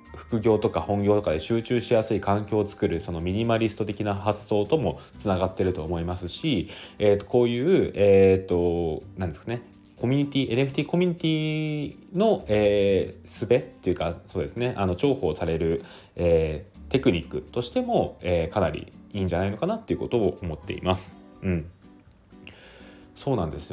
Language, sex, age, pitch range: Japanese, male, 20-39, 85-115 Hz